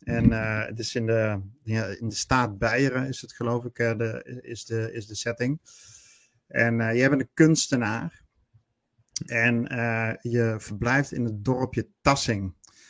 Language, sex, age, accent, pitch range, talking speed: Dutch, male, 50-69, Dutch, 115-135 Hz, 170 wpm